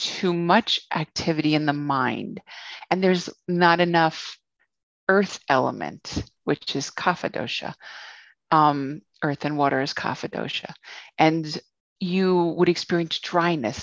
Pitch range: 145-185 Hz